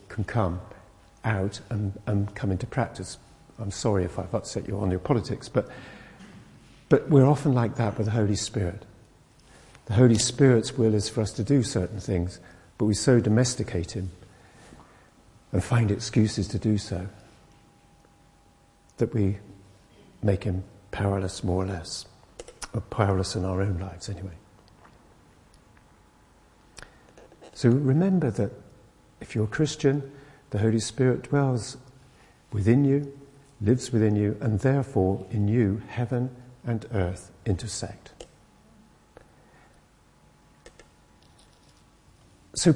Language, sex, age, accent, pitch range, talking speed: English, male, 50-69, British, 100-125 Hz, 125 wpm